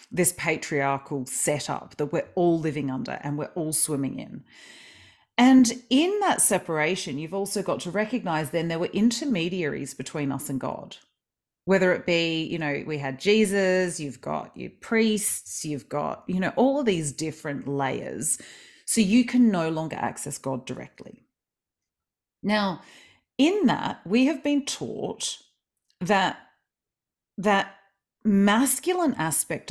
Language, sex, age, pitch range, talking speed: English, female, 40-59, 140-195 Hz, 140 wpm